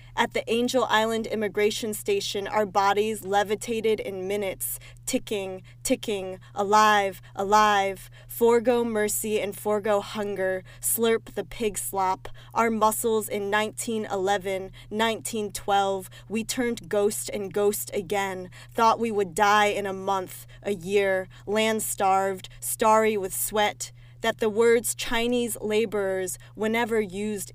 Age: 20-39